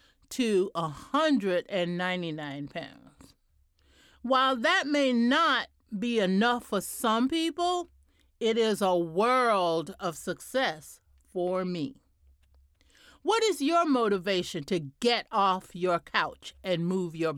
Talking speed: 110 wpm